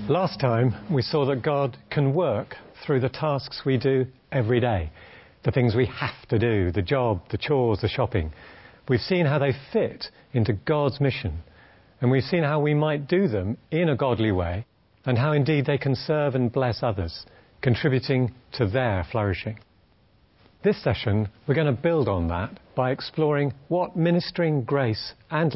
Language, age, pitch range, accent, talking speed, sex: English, 50-69, 105-140 Hz, British, 175 wpm, male